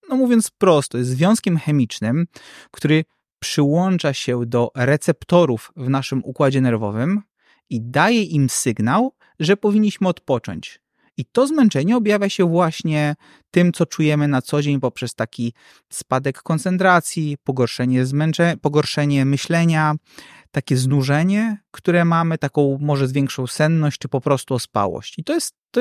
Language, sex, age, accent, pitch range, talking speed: Polish, male, 30-49, native, 135-175 Hz, 135 wpm